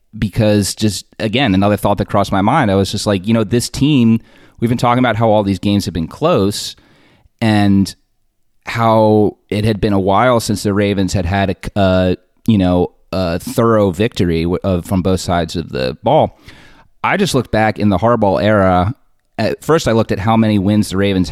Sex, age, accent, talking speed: male, 30-49, American, 205 wpm